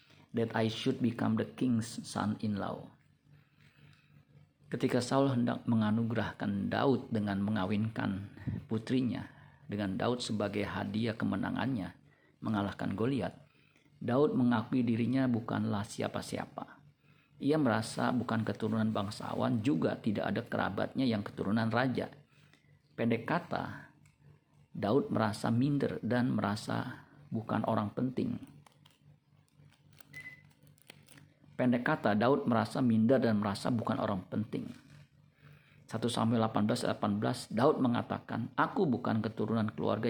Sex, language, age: male, Indonesian, 50-69